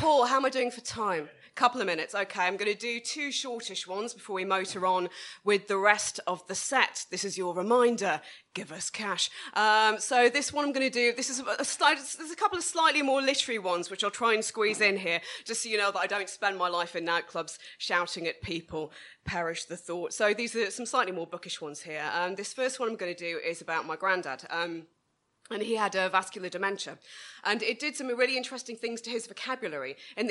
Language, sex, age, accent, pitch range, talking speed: English, female, 20-39, British, 175-230 Hz, 235 wpm